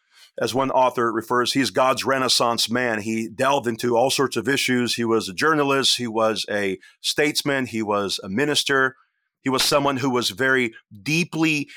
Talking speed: 175 wpm